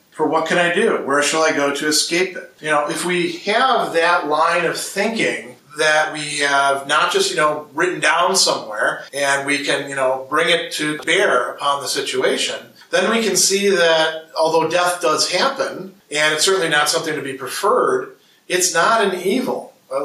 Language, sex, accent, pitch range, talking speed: English, male, American, 145-180 Hz, 195 wpm